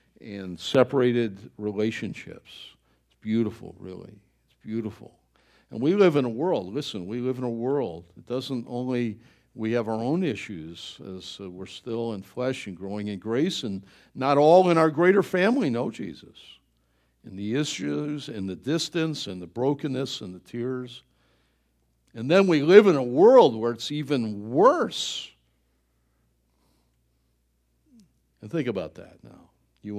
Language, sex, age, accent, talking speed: English, male, 60-79, American, 145 wpm